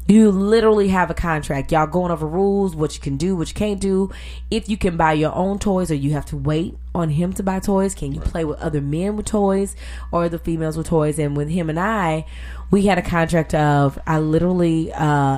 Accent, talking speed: American, 235 wpm